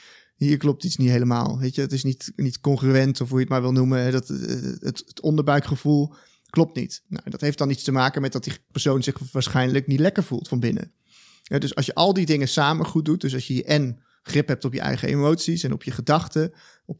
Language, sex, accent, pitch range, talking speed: Dutch, male, Dutch, 130-150 Hz, 240 wpm